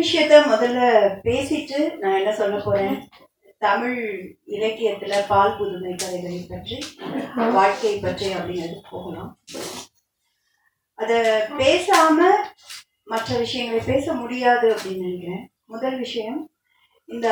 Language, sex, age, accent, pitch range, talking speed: Tamil, female, 20-39, native, 215-305 Hz, 90 wpm